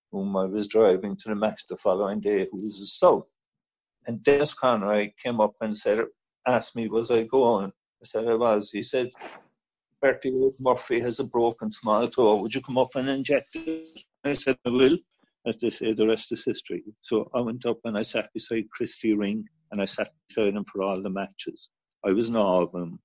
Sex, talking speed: male, 215 wpm